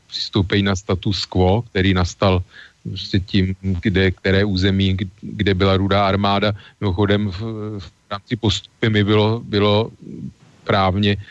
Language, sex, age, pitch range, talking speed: Slovak, male, 40-59, 95-105 Hz, 120 wpm